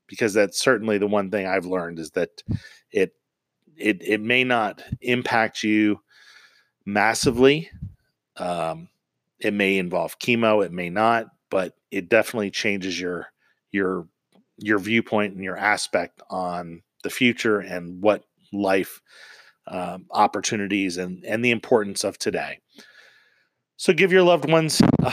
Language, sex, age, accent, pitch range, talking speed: English, male, 40-59, American, 95-125 Hz, 135 wpm